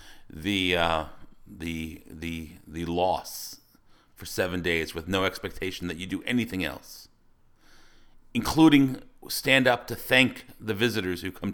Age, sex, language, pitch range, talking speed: 40-59, male, English, 90-115 Hz, 135 wpm